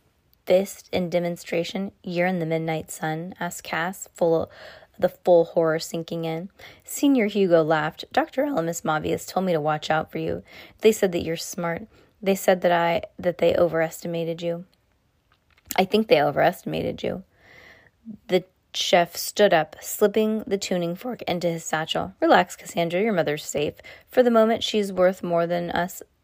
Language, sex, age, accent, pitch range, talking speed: English, female, 20-39, American, 165-200 Hz, 165 wpm